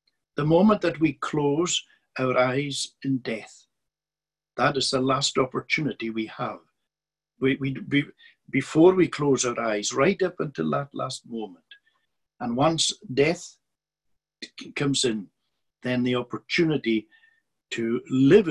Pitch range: 125-165 Hz